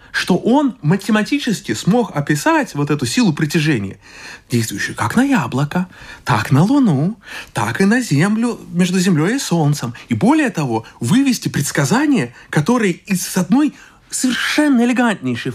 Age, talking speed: 30-49, 130 wpm